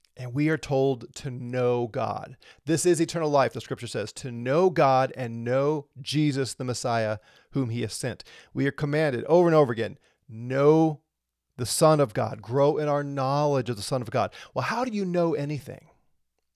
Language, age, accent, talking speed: English, 40-59, American, 190 wpm